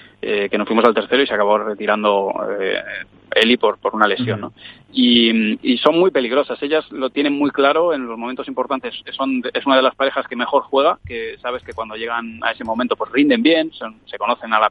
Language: Spanish